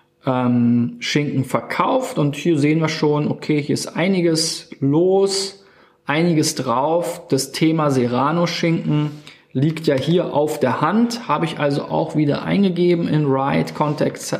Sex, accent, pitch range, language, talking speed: male, German, 140-165 Hz, German, 140 wpm